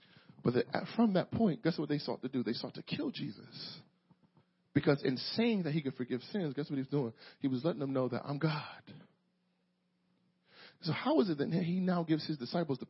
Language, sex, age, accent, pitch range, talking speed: English, male, 40-59, American, 170-230 Hz, 215 wpm